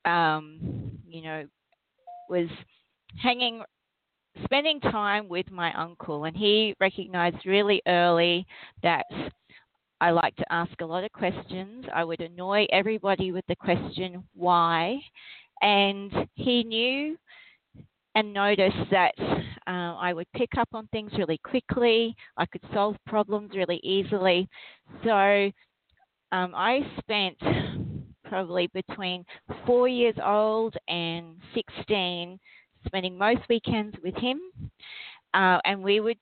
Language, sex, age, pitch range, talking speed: English, female, 40-59, 175-220 Hz, 120 wpm